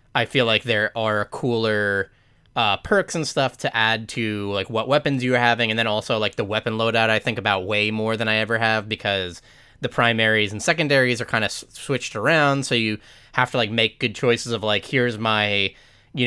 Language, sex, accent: English, male, American